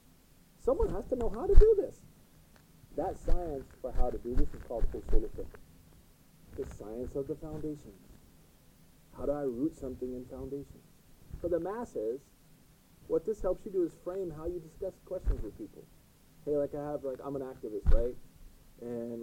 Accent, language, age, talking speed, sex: American, English, 40-59, 175 wpm, male